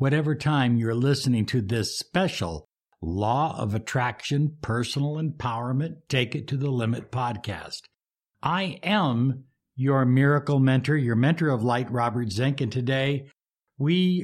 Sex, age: male, 60-79